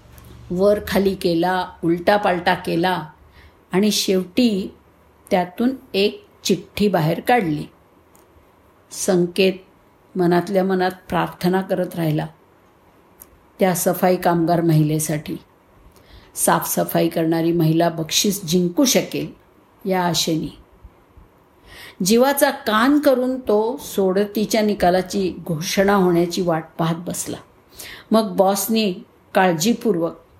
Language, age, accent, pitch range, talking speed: Marathi, 50-69, native, 165-215 Hz, 65 wpm